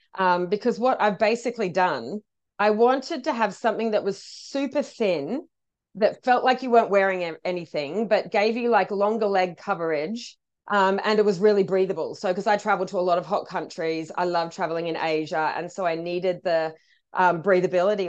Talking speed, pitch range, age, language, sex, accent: 190 wpm, 175-215 Hz, 30-49, English, female, Australian